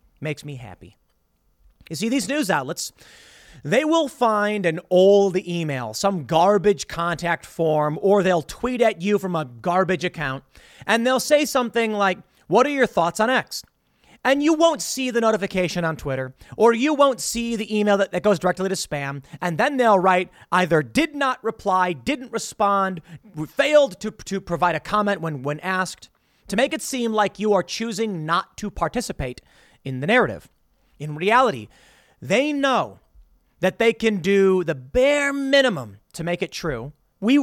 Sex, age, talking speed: male, 30-49, 170 wpm